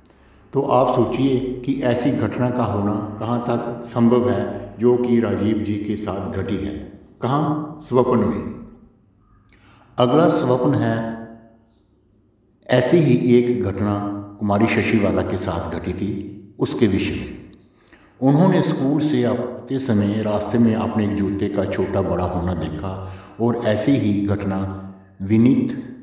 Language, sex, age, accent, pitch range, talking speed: Hindi, male, 60-79, native, 95-115 Hz, 140 wpm